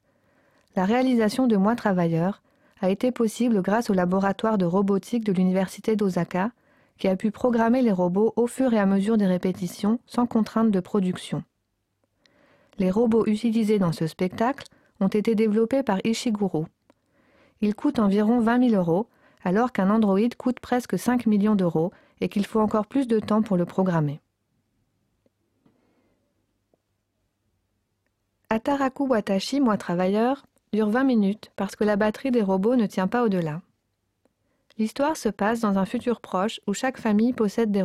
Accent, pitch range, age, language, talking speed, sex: French, 185-235 Hz, 40-59, French, 155 wpm, female